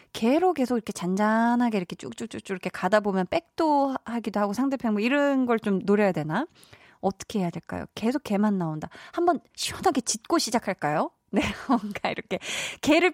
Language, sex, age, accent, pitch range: Korean, female, 20-39, native, 195-295 Hz